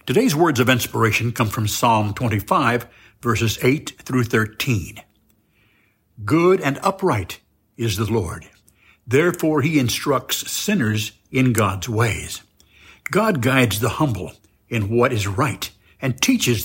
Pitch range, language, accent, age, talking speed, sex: 105-145 Hz, English, American, 60-79, 125 wpm, male